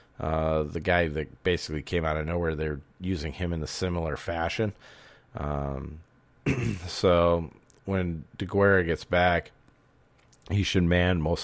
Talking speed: 135 wpm